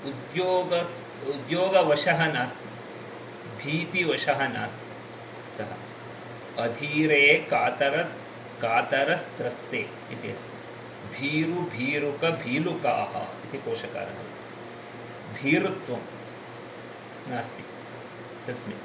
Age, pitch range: 30-49, 120-155 Hz